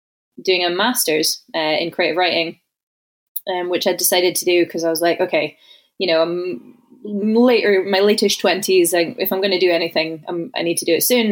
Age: 20-39